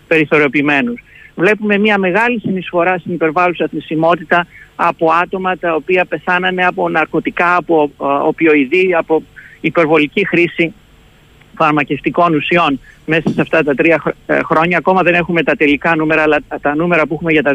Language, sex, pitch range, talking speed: Greek, male, 155-185 Hz, 145 wpm